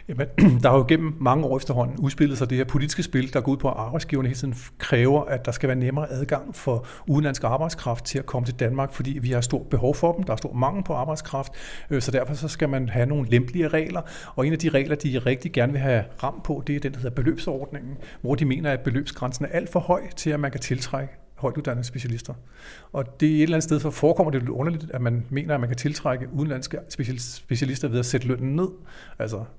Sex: male